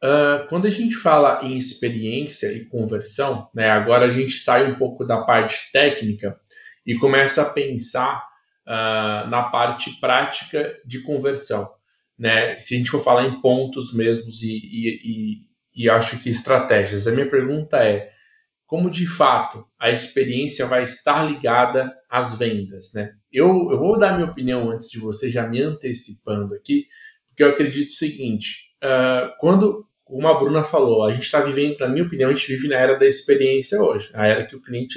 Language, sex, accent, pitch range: Portuguese, male, Brazilian, 115-150 Hz